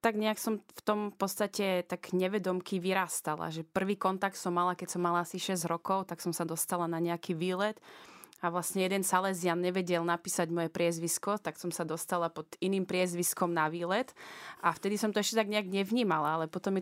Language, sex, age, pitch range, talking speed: Slovak, female, 20-39, 170-205 Hz, 195 wpm